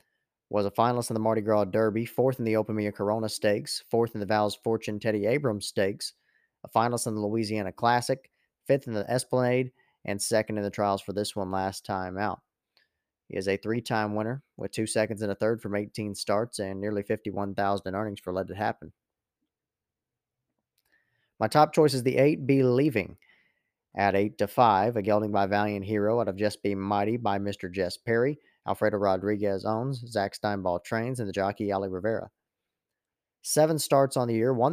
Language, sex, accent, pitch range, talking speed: English, male, American, 100-115 Hz, 190 wpm